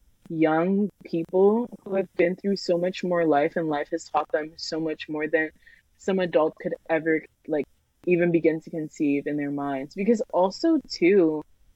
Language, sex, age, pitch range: English, female, 20-39, 160-200 Hz